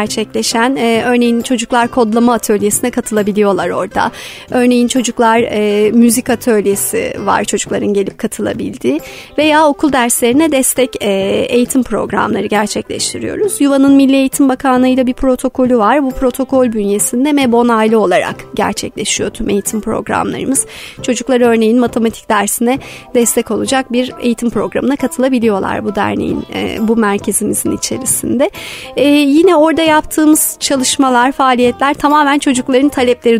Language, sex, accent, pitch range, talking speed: Turkish, female, native, 220-260 Hz, 120 wpm